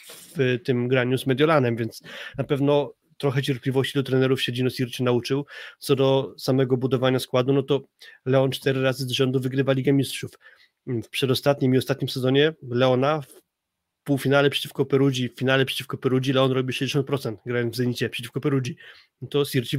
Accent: native